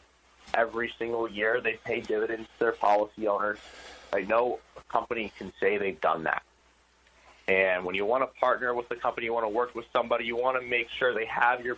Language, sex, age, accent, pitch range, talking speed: English, male, 20-39, American, 90-120 Hz, 210 wpm